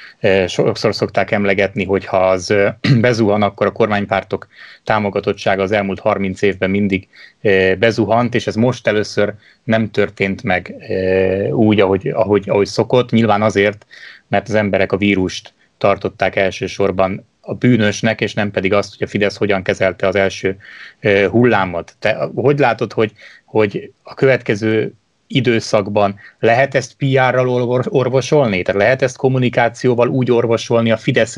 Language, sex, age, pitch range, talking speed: Hungarian, male, 30-49, 100-120 Hz, 140 wpm